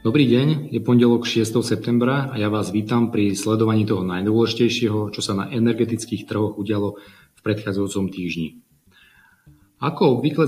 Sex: male